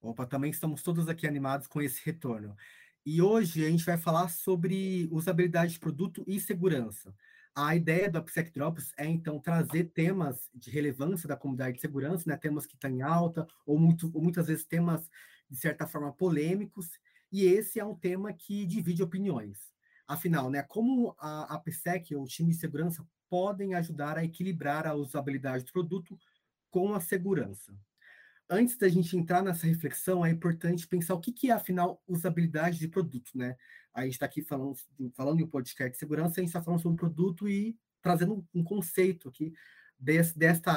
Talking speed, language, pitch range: 175 wpm, Portuguese, 150-185 Hz